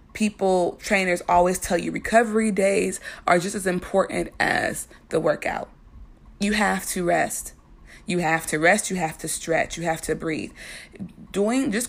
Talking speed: 160 wpm